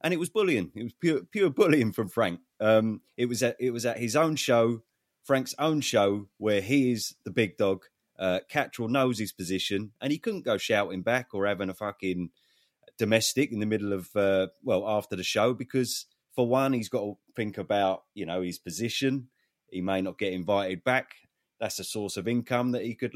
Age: 30-49